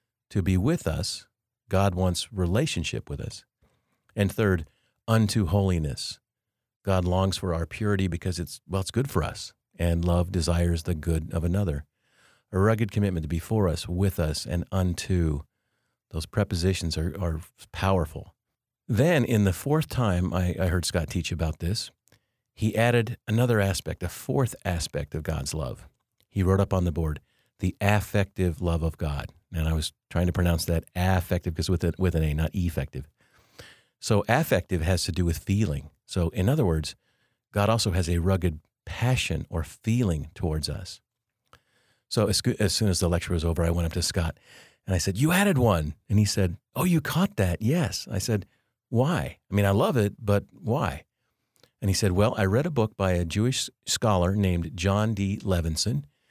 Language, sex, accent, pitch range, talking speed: English, male, American, 85-110 Hz, 180 wpm